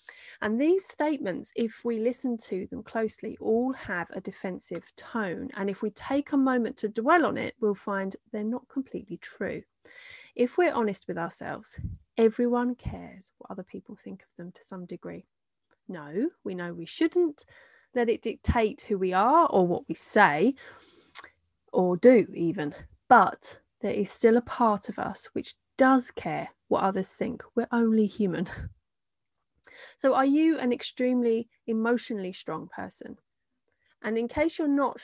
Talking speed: 160 wpm